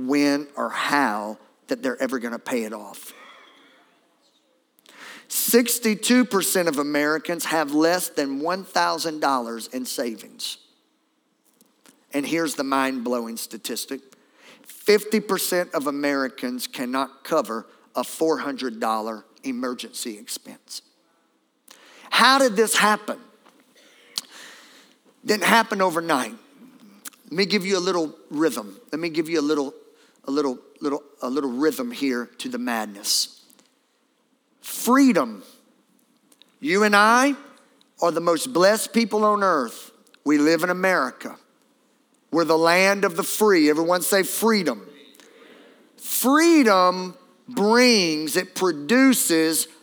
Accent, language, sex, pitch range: American, English, male, 155-255 Hz